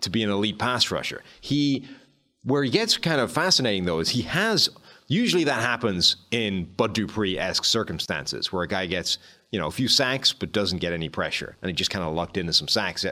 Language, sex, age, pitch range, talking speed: English, male, 30-49, 95-130 Hz, 215 wpm